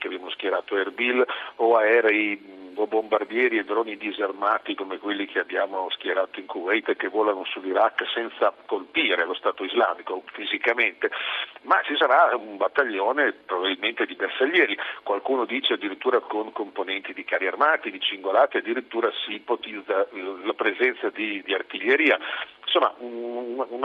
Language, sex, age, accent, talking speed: Italian, male, 50-69, native, 145 wpm